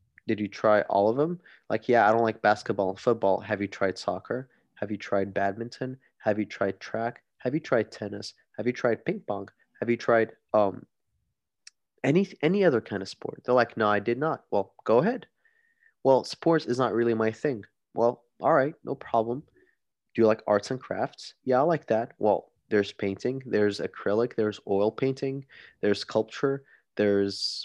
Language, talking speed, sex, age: English, 190 wpm, male, 20-39